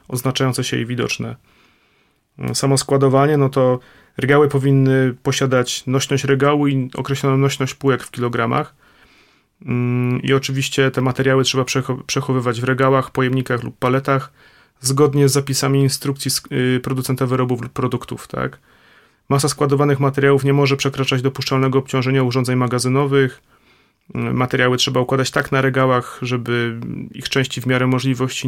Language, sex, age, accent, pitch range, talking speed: Polish, male, 30-49, native, 125-135 Hz, 130 wpm